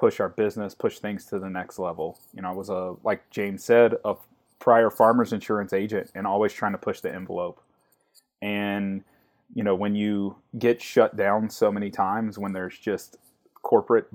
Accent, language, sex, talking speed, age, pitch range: American, English, male, 185 wpm, 30-49, 95-110 Hz